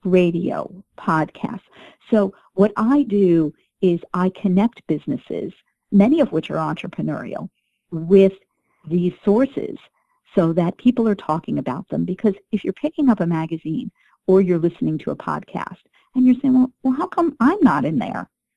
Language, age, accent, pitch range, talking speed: English, 50-69, American, 160-215 Hz, 160 wpm